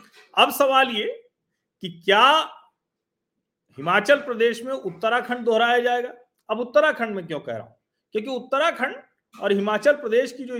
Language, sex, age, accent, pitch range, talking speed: Hindi, male, 40-59, native, 190-245 Hz, 140 wpm